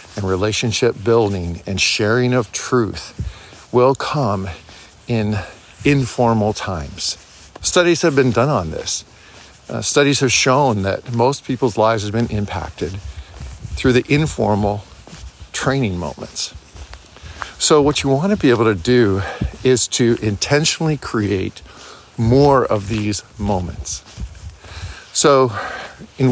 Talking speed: 120 wpm